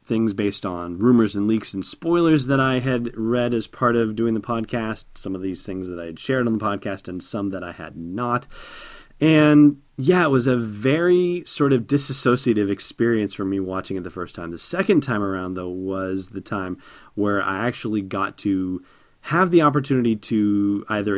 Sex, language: male, English